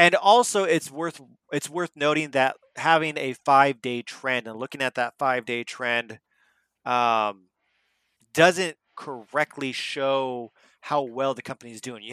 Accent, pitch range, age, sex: American, 120-165 Hz, 30-49, male